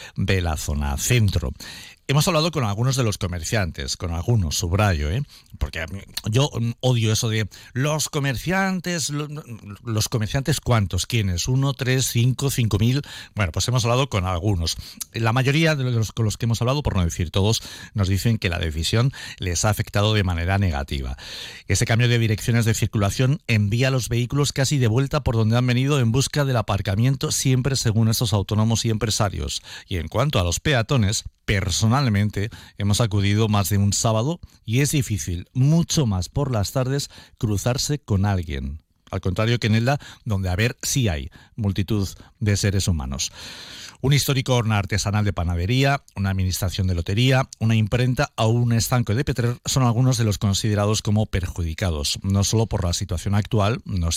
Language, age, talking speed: Spanish, 50-69, 175 wpm